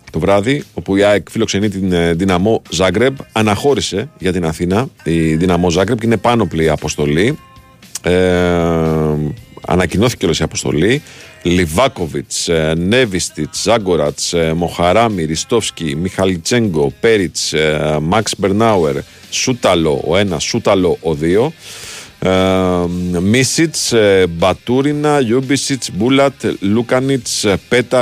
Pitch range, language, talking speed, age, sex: 85-115 Hz, Greek, 105 wpm, 40-59, male